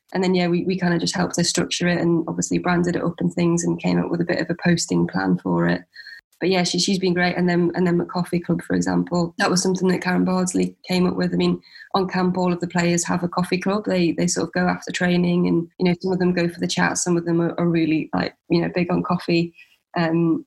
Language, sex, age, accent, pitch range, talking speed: English, female, 20-39, British, 165-175 Hz, 280 wpm